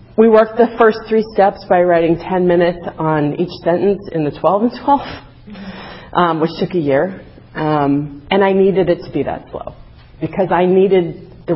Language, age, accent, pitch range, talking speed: English, 40-59, American, 140-180 Hz, 190 wpm